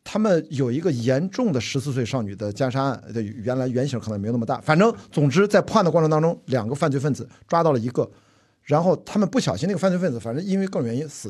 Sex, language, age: male, Chinese, 50-69